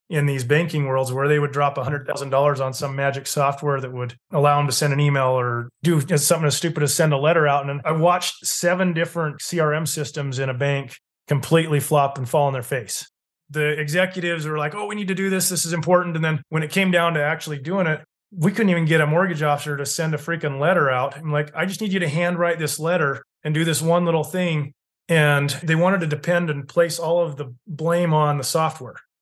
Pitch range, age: 145-170 Hz, 30-49